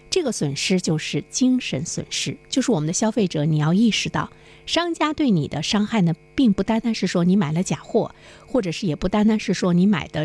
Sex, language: female, Chinese